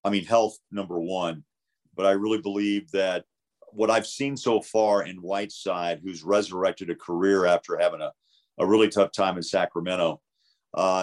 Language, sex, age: English, male, 40-59